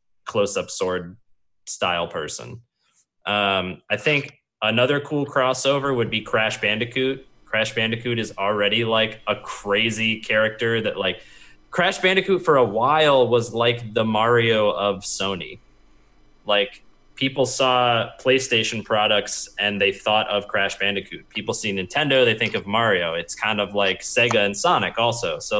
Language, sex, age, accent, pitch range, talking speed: English, male, 20-39, American, 105-125 Hz, 145 wpm